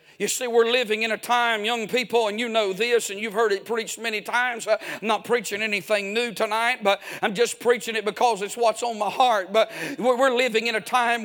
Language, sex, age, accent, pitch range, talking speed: English, male, 50-69, American, 230-270 Hz, 230 wpm